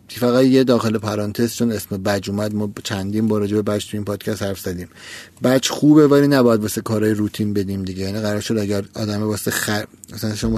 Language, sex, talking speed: Persian, male, 205 wpm